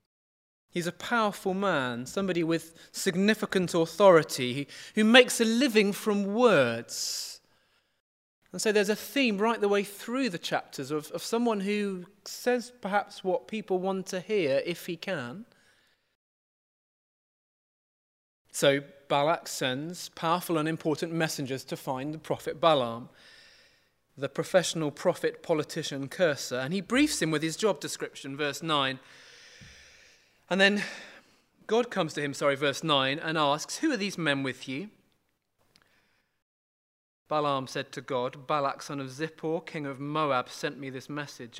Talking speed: 140 wpm